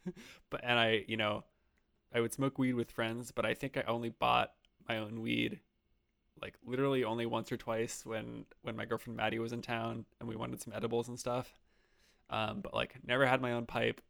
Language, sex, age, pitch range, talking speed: English, male, 20-39, 110-120 Hz, 210 wpm